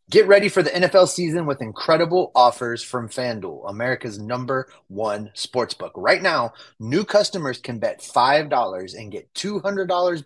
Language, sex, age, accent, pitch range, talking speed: English, male, 30-49, American, 120-145 Hz, 145 wpm